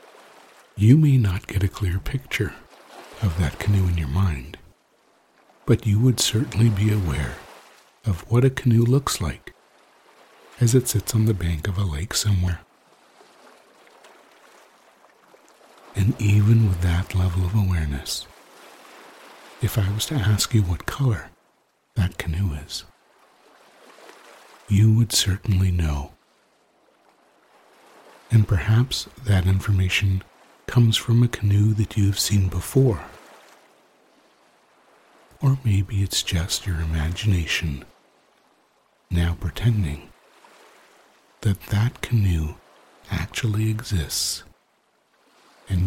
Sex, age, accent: male, 60-79, American